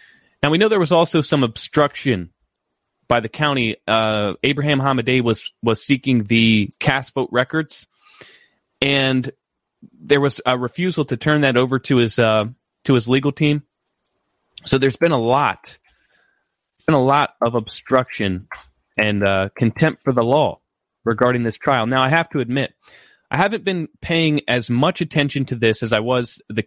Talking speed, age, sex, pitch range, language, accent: 165 wpm, 30-49, male, 120-165 Hz, English, American